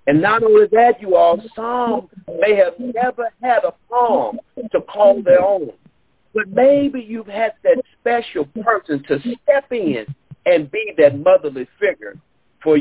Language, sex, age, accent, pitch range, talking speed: English, male, 50-69, American, 185-270 Hz, 155 wpm